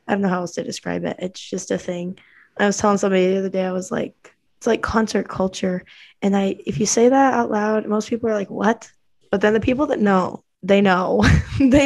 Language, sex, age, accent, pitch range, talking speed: English, female, 10-29, American, 185-230 Hz, 245 wpm